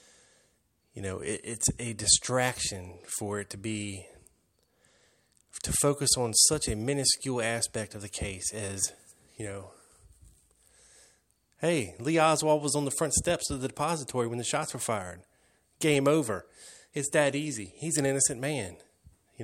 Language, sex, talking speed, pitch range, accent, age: English, male, 150 wpm, 100-130 Hz, American, 20-39